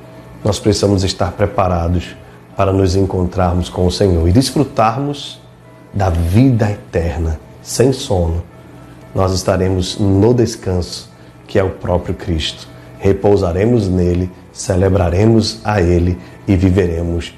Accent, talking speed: Brazilian, 115 wpm